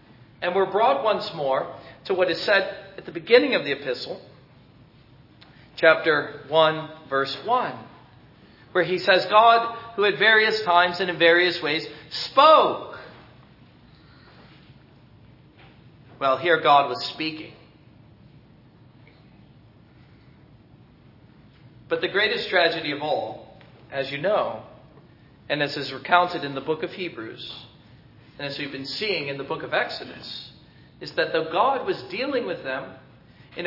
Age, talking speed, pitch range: 40-59, 130 wpm, 140-190 Hz